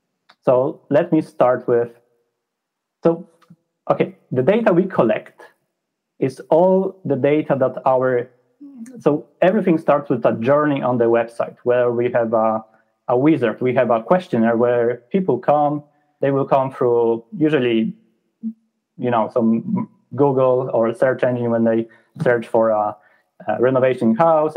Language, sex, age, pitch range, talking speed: English, male, 30-49, 110-145 Hz, 145 wpm